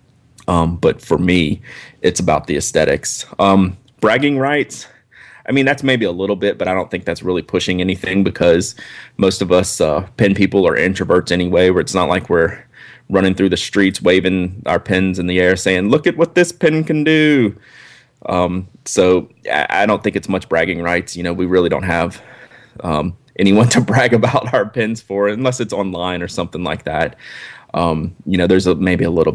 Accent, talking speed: American, 200 wpm